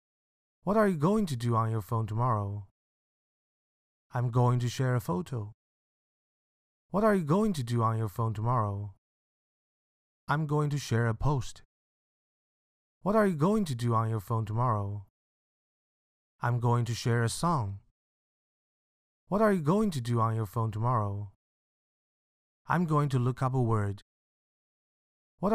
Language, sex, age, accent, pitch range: Chinese, male, 30-49, American, 110-145 Hz